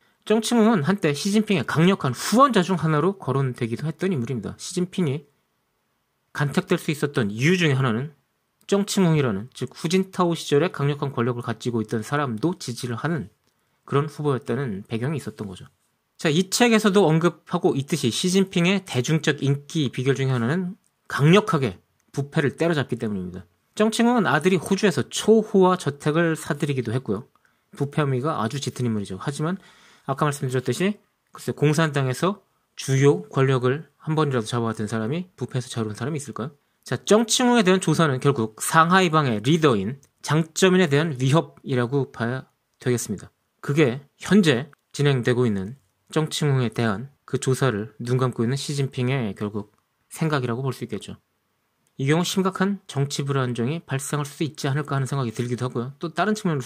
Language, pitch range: Korean, 125-175 Hz